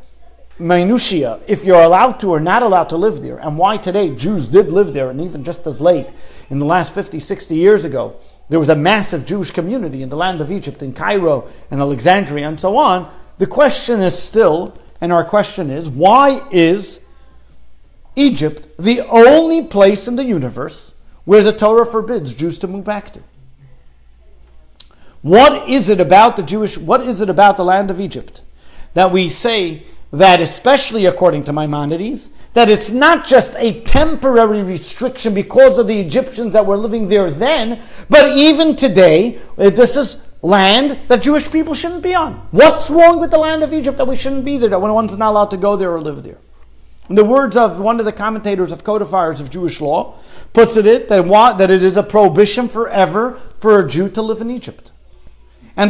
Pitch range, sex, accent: 165-235 Hz, male, American